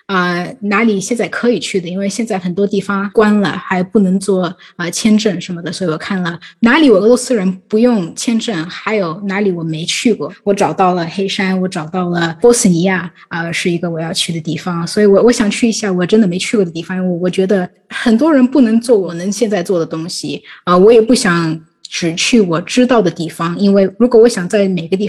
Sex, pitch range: female, 175-220 Hz